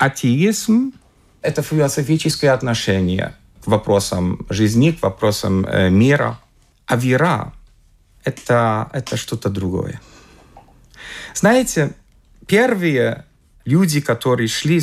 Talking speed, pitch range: 95 wpm, 110-165 Hz